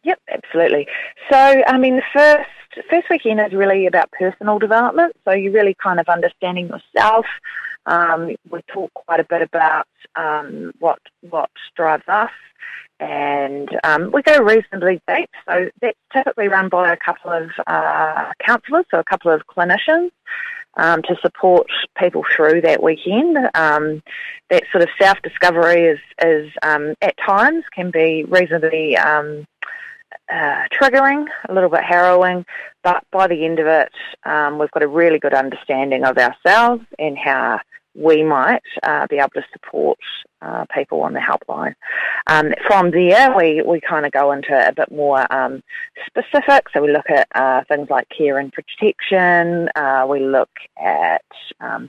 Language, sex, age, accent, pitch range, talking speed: English, female, 30-49, Australian, 155-260 Hz, 160 wpm